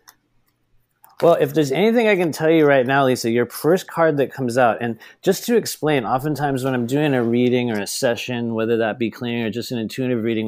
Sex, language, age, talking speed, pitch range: male, English, 30-49, 225 wpm, 105-130 Hz